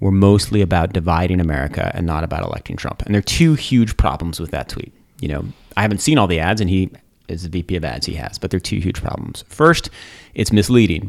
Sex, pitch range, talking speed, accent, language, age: male, 85-110 Hz, 245 wpm, American, English, 30-49